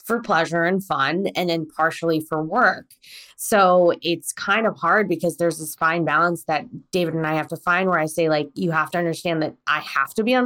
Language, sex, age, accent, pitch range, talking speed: English, female, 20-39, American, 155-190 Hz, 230 wpm